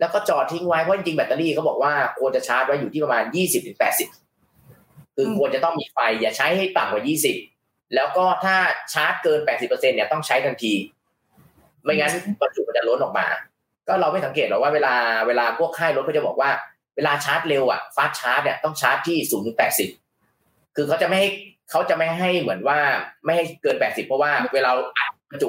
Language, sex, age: Thai, male, 20-39